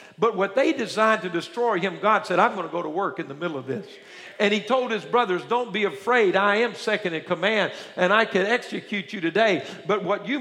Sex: male